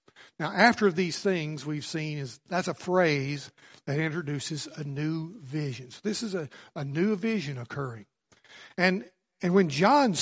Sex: male